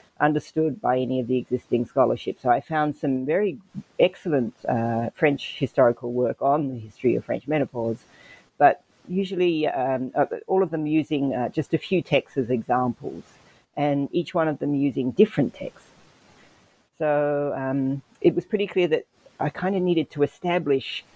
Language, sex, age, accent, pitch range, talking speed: English, female, 40-59, Australian, 130-170 Hz, 165 wpm